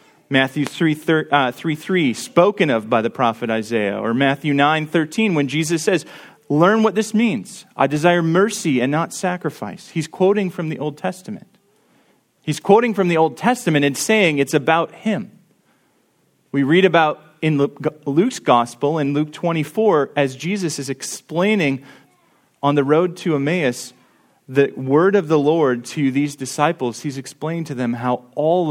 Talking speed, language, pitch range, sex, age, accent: 165 wpm, English, 140-185 Hz, male, 30-49, American